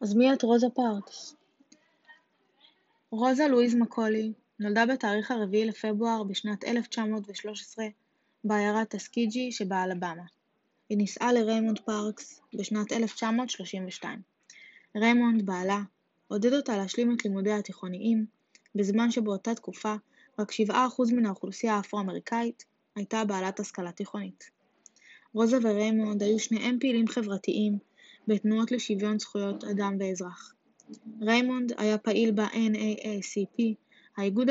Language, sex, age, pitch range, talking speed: Hebrew, female, 10-29, 205-235 Hz, 105 wpm